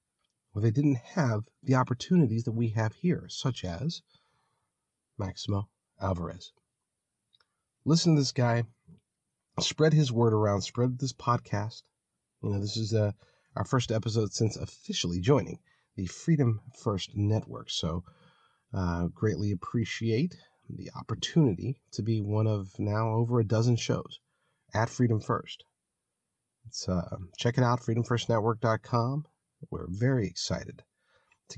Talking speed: 130 wpm